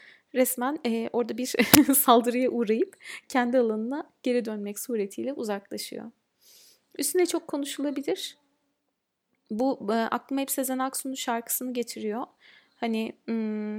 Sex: female